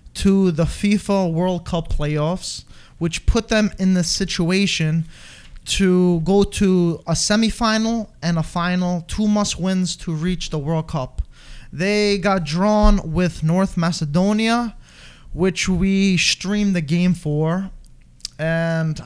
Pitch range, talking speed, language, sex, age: 165-195 Hz, 125 wpm, English, male, 20-39